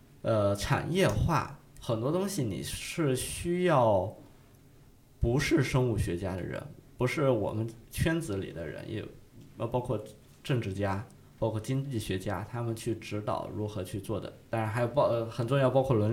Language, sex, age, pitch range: Chinese, male, 20-39, 105-130 Hz